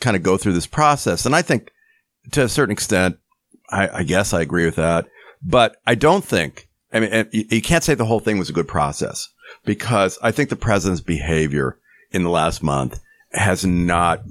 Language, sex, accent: English, male, American